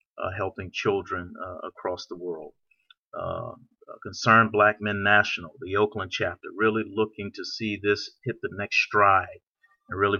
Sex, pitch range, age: male, 100-115 Hz, 40-59